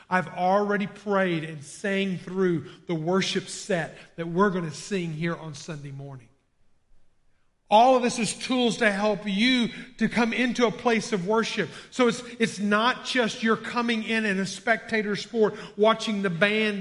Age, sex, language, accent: 50-69, male, English, American